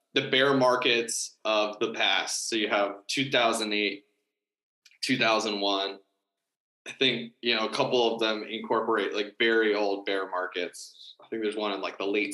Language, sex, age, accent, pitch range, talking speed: English, male, 20-39, American, 105-125 Hz, 160 wpm